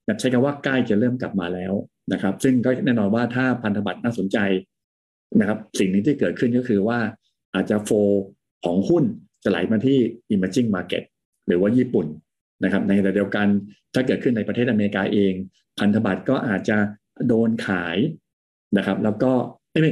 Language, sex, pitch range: Thai, male, 100-125 Hz